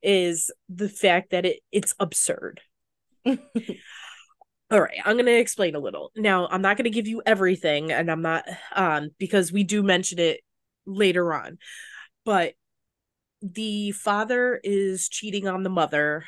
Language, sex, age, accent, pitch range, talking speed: English, female, 20-39, American, 170-210 Hz, 150 wpm